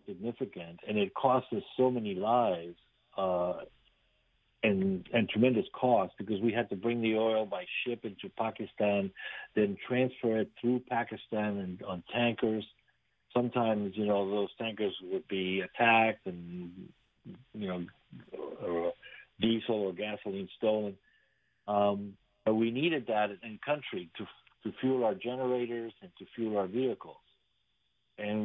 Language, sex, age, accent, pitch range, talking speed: English, male, 50-69, American, 95-115 Hz, 135 wpm